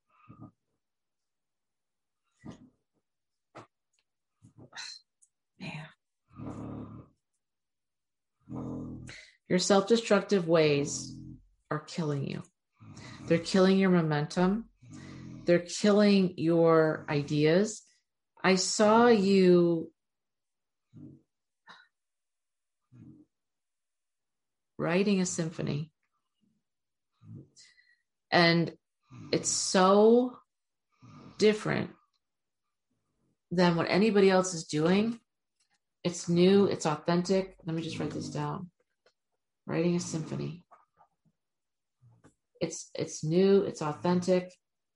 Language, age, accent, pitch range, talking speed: English, 50-69, American, 160-190 Hz, 65 wpm